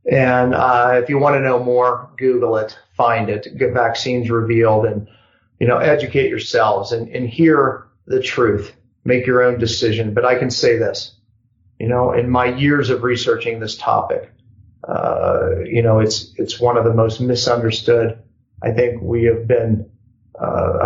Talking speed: 170 wpm